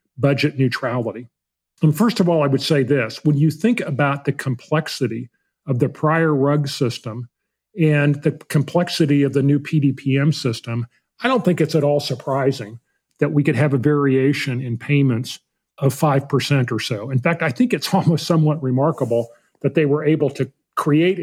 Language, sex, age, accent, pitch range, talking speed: English, male, 40-59, American, 135-155 Hz, 175 wpm